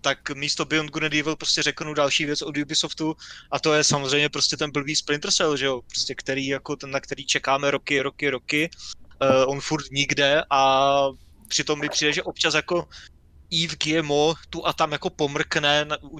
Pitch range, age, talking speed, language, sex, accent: 135-155 Hz, 20-39, 190 wpm, Czech, male, native